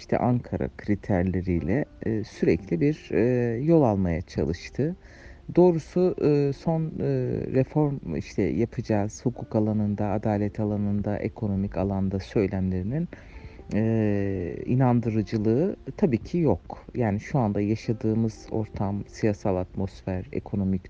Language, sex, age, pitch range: Turkish, male, 60-79, 95-130 Hz